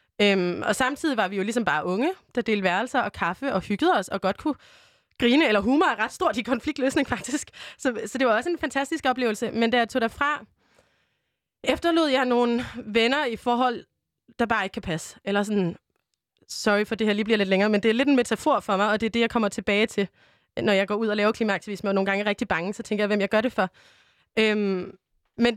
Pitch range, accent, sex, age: 205-255 Hz, native, female, 20-39